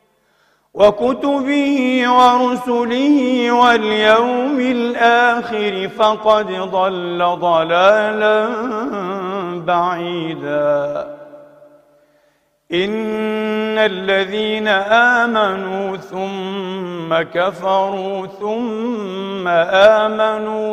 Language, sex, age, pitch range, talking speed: Arabic, male, 50-69, 185-235 Hz, 45 wpm